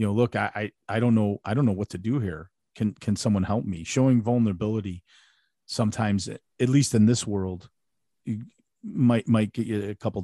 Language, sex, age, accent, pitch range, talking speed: English, male, 40-59, American, 100-120 Hz, 200 wpm